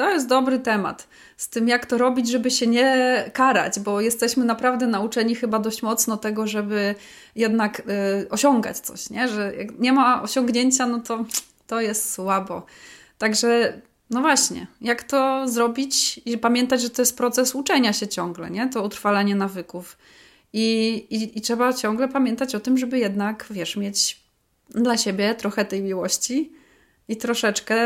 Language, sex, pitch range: Polish, female, 210-255 Hz